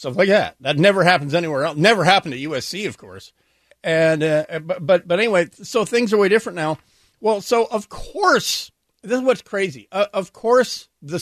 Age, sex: 50-69, male